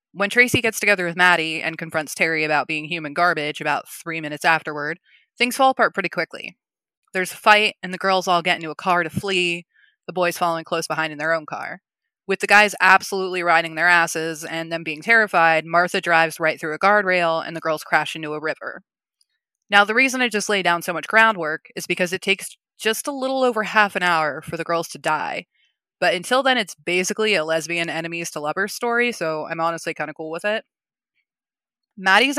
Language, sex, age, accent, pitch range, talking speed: English, female, 20-39, American, 160-195 Hz, 210 wpm